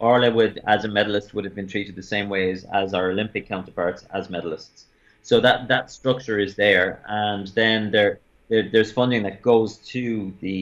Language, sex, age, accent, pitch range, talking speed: English, male, 30-49, Irish, 100-115 Hz, 190 wpm